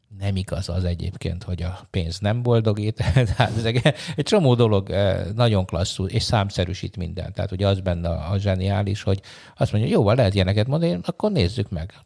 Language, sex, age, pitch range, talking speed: Hungarian, male, 60-79, 90-115 Hz, 170 wpm